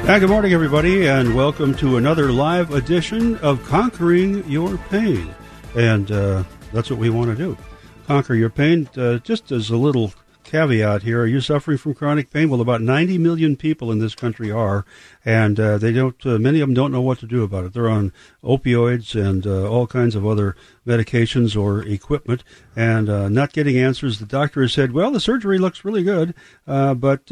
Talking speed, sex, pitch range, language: 200 wpm, male, 115-150 Hz, English